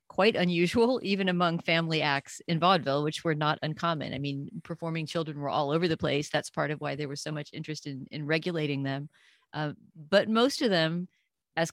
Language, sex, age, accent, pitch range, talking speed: English, female, 40-59, American, 150-185 Hz, 205 wpm